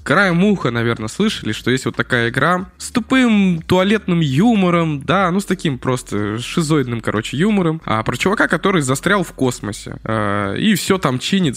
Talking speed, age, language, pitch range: 170 wpm, 20-39, Russian, 120-175 Hz